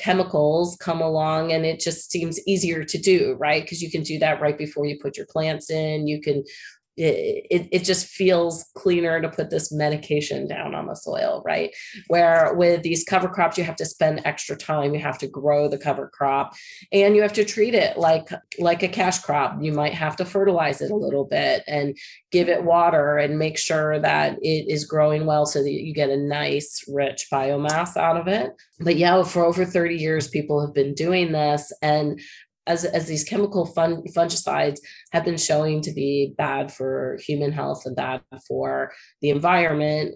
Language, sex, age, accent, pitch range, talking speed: English, female, 30-49, American, 145-170 Hz, 200 wpm